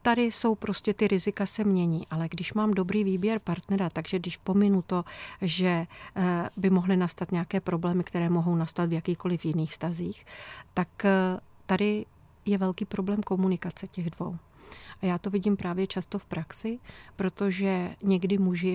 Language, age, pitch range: Czech, 40-59, 175-200 Hz